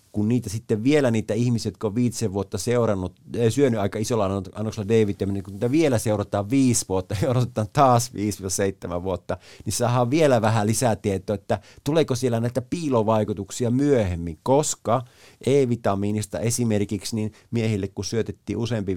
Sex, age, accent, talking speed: male, 50-69, native, 150 wpm